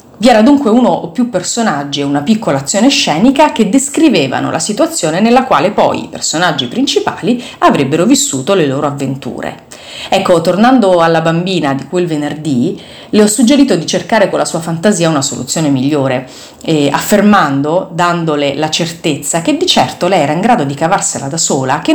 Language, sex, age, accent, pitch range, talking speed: Italian, female, 30-49, native, 150-210 Hz, 170 wpm